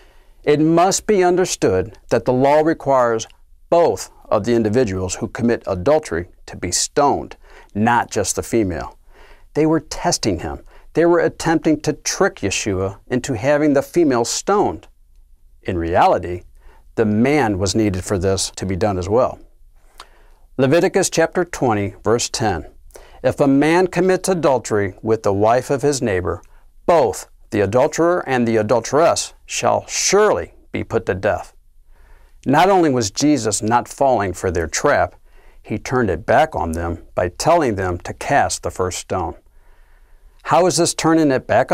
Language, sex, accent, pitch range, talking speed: English, male, American, 100-155 Hz, 155 wpm